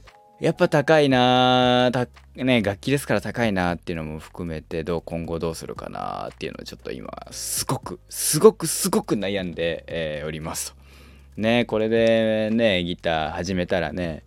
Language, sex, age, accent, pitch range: Japanese, male, 20-39, native, 80-120 Hz